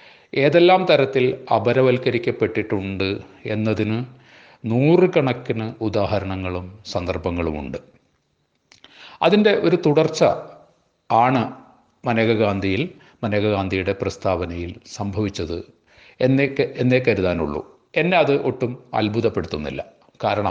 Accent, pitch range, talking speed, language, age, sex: native, 105-130 Hz, 65 wpm, Malayalam, 40-59, male